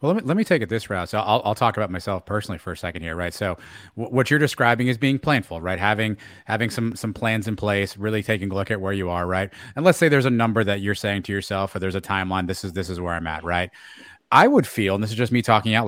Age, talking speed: 30-49, 300 wpm